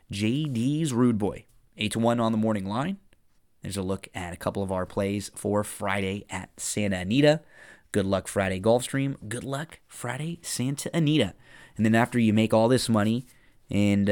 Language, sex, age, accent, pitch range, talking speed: English, male, 20-39, American, 95-115 Hz, 175 wpm